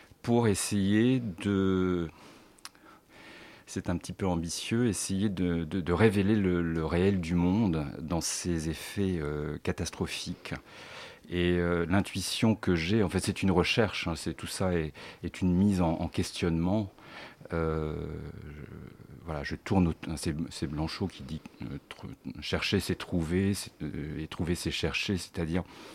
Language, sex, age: French, male, 50-69